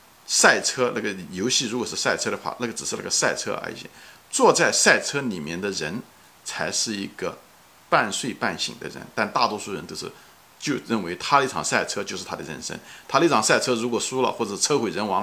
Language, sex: Chinese, male